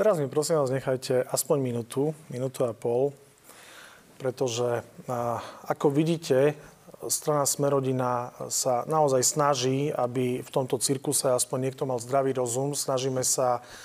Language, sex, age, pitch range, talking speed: Slovak, male, 30-49, 130-150 Hz, 125 wpm